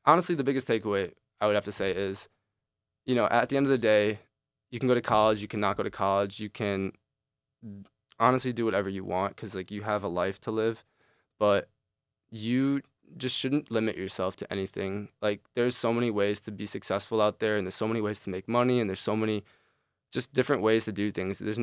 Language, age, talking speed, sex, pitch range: English, 20-39, 220 wpm, male, 100-120 Hz